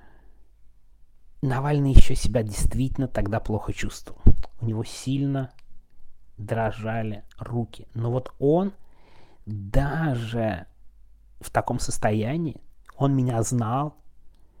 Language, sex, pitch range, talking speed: Russian, male, 105-125 Hz, 90 wpm